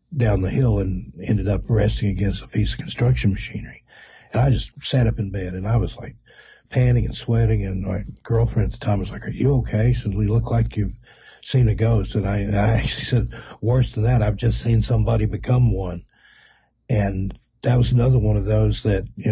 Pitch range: 105-120 Hz